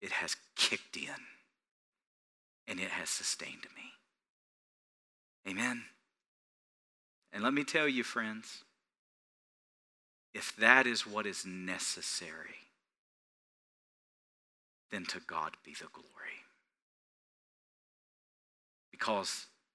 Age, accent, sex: 40-59, American, male